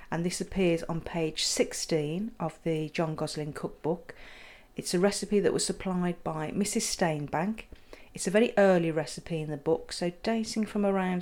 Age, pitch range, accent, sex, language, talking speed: 40-59, 160-200 Hz, British, female, English, 170 wpm